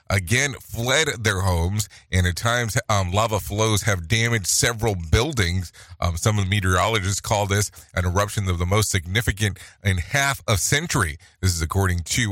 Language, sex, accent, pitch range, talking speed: English, male, American, 95-115 Hz, 170 wpm